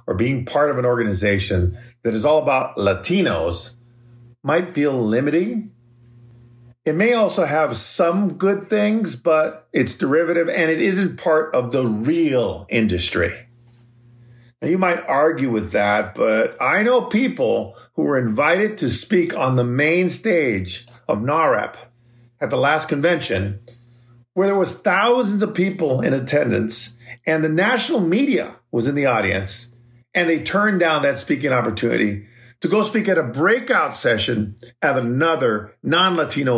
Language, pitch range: English, 120-170 Hz